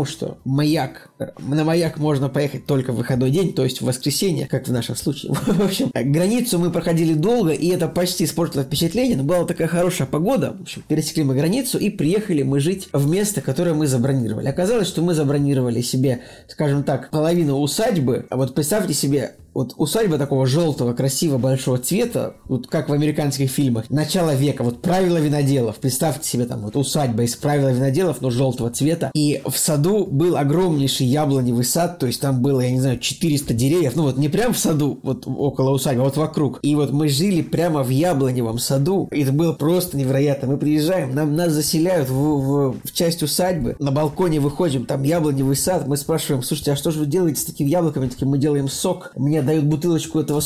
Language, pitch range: Russian, 130-160 Hz